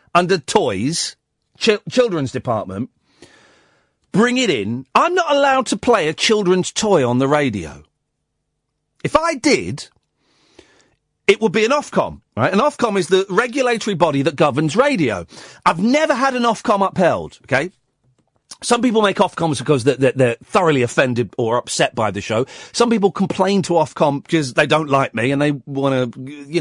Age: 40-59